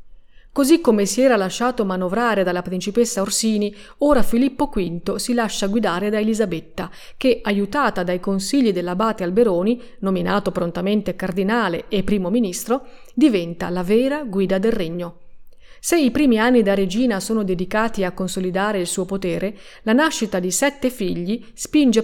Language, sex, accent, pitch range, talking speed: Italian, female, native, 190-245 Hz, 145 wpm